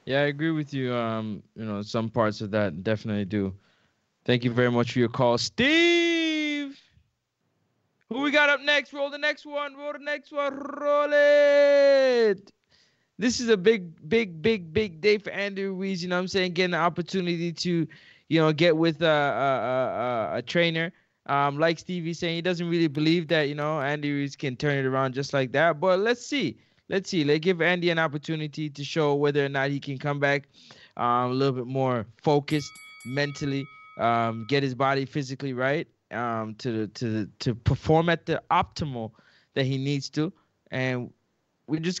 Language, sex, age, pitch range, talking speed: English, male, 20-39, 135-185 Hz, 185 wpm